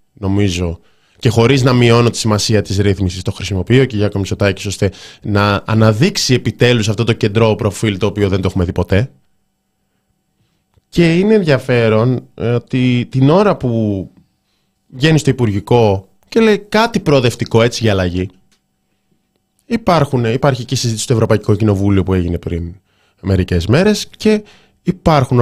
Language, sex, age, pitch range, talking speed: Greek, male, 20-39, 100-130 Hz, 140 wpm